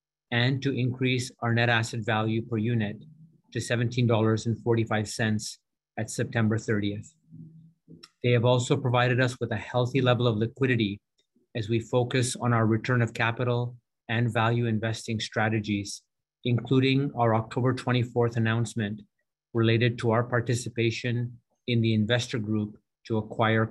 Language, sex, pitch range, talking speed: English, male, 110-125 Hz, 130 wpm